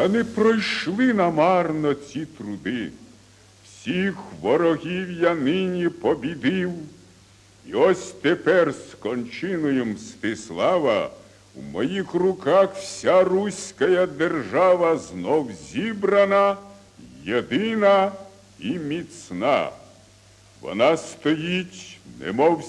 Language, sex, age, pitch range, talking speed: Ukrainian, male, 60-79, 145-195 Hz, 80 wpm